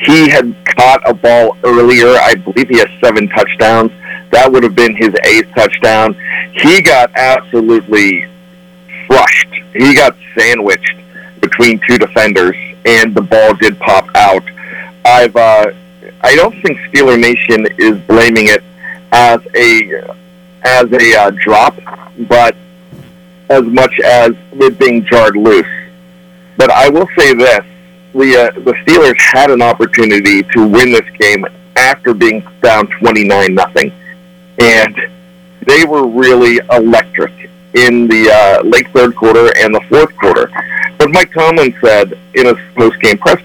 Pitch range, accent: 110-175 Hz, American